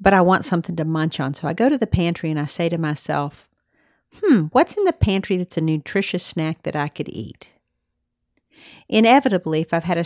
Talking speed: 215 wpm